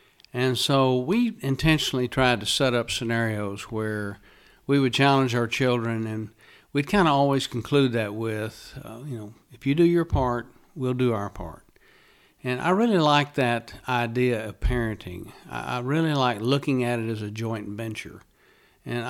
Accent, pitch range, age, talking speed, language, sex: American, 115-135 Hz, 60-79, 175 wpm, English, male